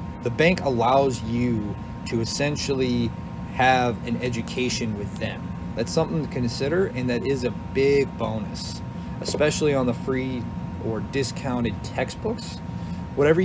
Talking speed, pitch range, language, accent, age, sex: 130 wpm, 110-135 Hz, English, American, 30-49, male